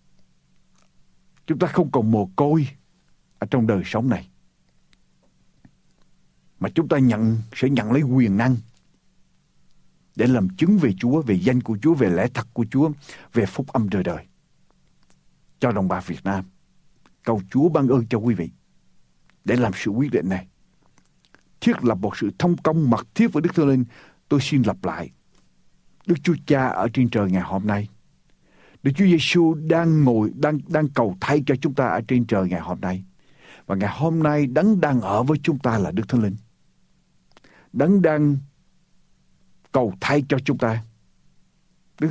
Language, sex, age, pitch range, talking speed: Vietnamese, male, 60-79, 110-160 Hz, 170 wpm